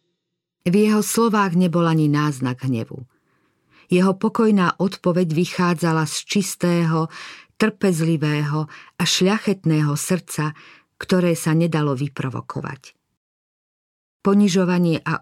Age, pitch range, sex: 50-69, 150-180 Hz, female